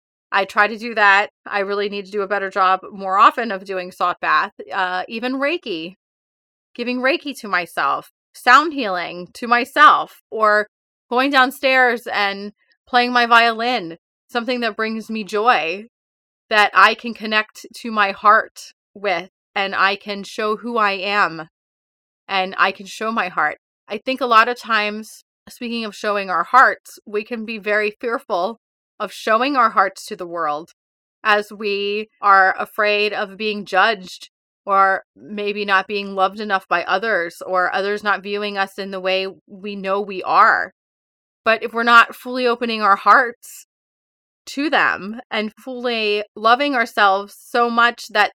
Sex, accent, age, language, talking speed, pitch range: female, American, 30-49, English, 160 wpm, 195-235 Hz